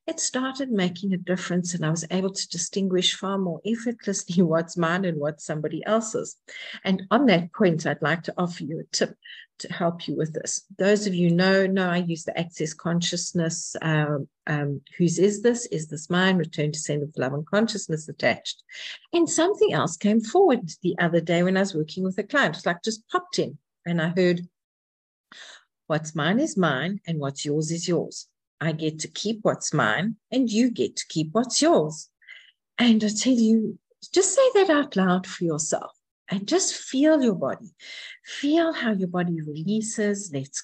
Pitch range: 165-220 Hz